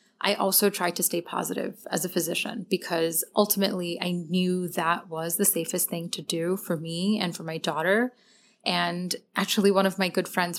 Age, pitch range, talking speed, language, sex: 30-49, 175-210 Hz, 185 wpm, English, female